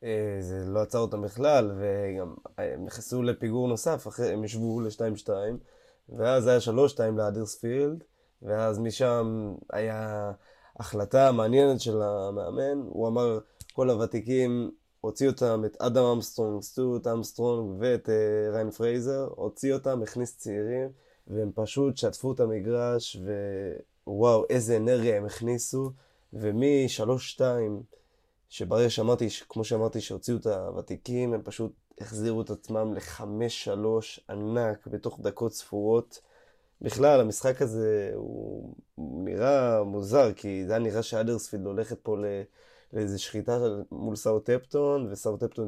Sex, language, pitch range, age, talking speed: male, Hebrew, 105-125 Hz, 20-39, 120 wpm